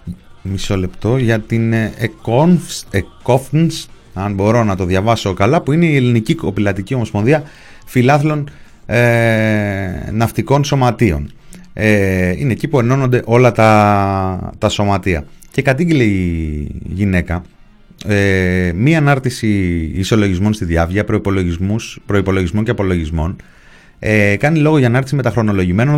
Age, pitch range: 30-49, 95-125 Hz